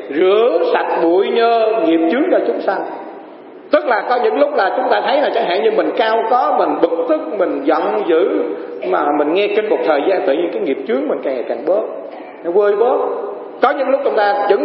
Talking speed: 225 wpm